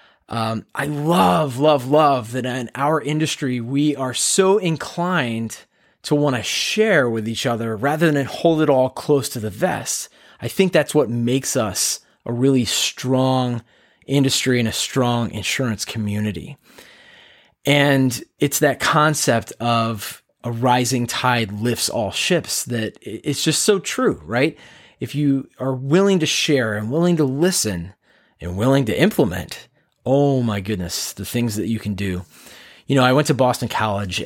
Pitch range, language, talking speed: 110-145 Hz, English, 160 wpm